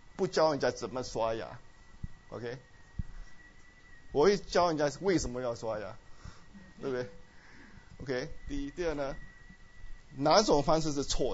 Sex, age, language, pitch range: male, 20-39, Chinese, 125-180 Hz